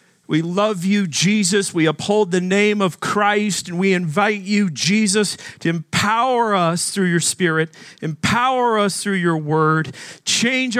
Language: English